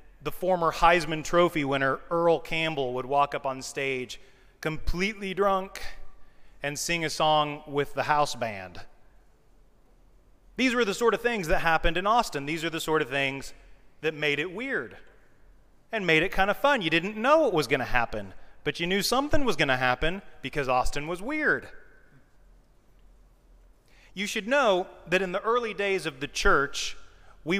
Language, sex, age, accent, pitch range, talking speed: English, male, 30-49, American, 140-195 Hz, 170 wpm